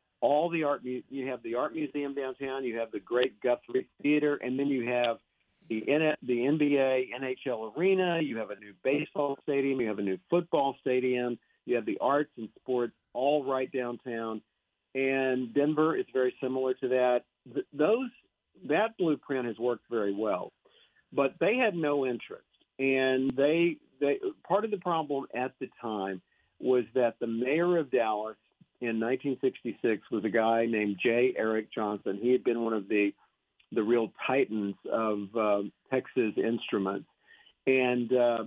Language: English